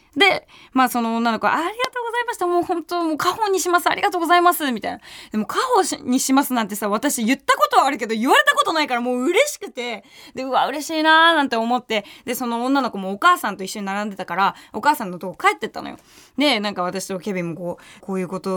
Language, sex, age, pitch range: Japanese, female, 20-39, 210-345 Hz